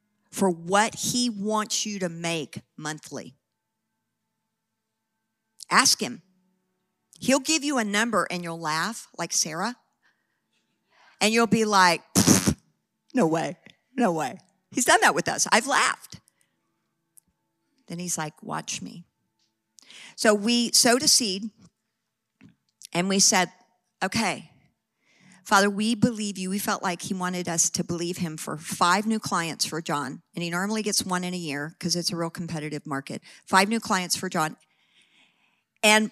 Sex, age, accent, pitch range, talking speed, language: female, 50-69, American, 180-235 Hz, 145 wpm, English